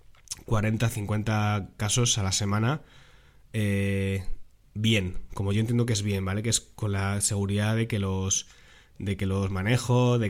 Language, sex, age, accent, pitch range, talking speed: Spanish, male, 20-39, Spanish, 100-120 Hz, 165 wpm